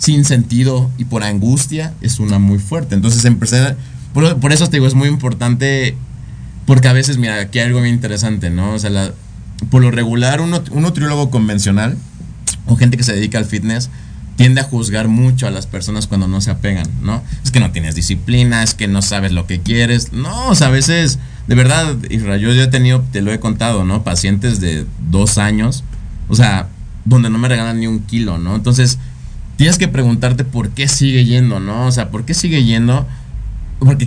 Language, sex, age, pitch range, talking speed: Spanish, male, 30-49, 105-130 Hz, 205 wpm